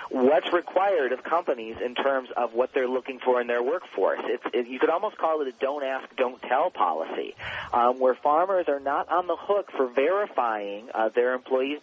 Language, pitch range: English, 120-165 Hz